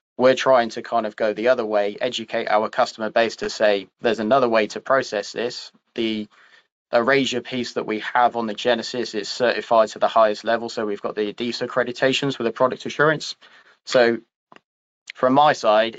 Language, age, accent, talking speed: English, 20-39, British, 190 wpm